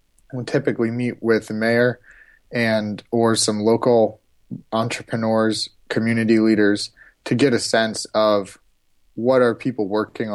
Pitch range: 105-120 Hz